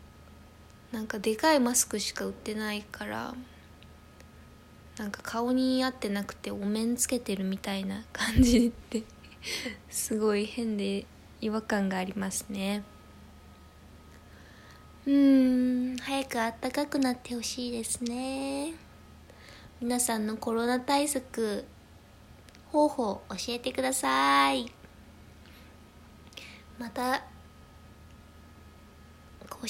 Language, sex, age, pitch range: Japanese, female, 20-39, 200-255 Hz